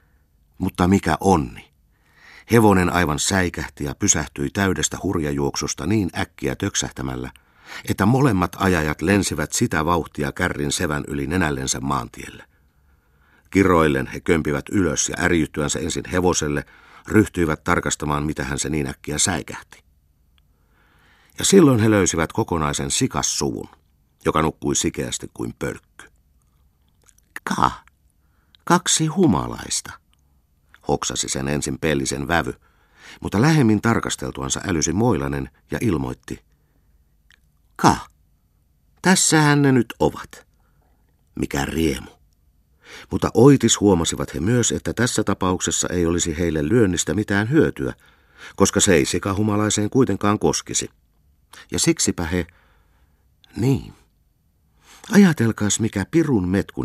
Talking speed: 105 wpm